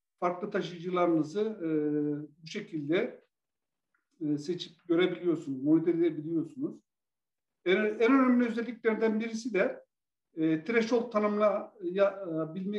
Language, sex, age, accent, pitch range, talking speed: Turkish, male, 50-69, native, 165-210 Hz, 90 wpm